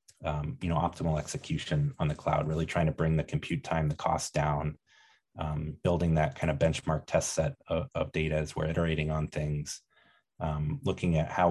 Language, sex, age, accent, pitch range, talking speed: English, male, 30-49, American, 80-90 Hz, 200 wpm